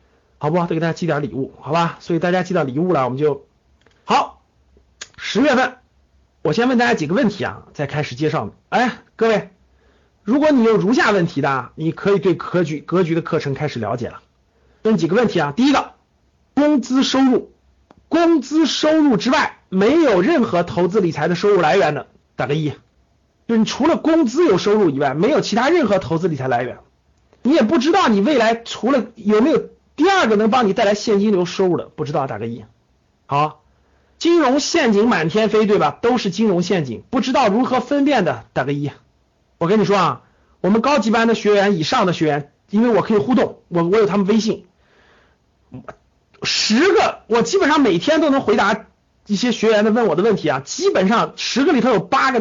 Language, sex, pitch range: Chinese, male, 155-235 Hz